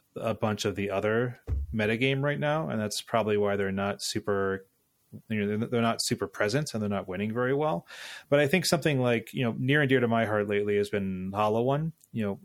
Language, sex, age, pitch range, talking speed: English, male, 30-49, 100-115 Hz, 225 wpm